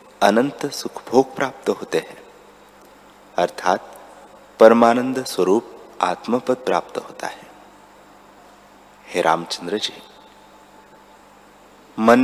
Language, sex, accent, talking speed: Hindi, male, native, 85 wpm